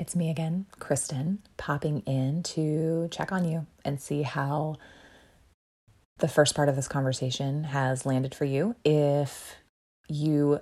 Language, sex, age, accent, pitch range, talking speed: English, female, 20-39, American, 130-155 Hz, 140 wpm